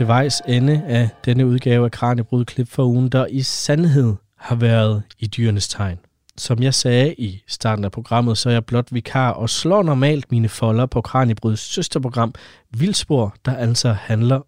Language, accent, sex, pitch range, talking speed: Danish, native, male, 110-145 Hz, 175 wpm